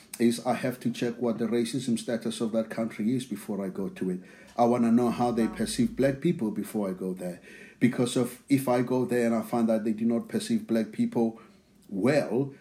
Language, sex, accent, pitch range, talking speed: English, male, South African, 110-125 Hz, 230 wpm